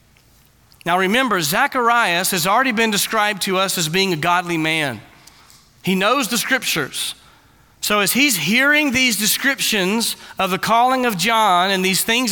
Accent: American